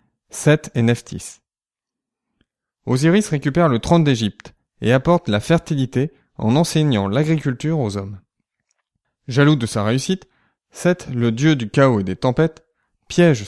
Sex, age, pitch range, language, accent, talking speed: male, 20-39, 110-150 Hz, French, French, 135 wpm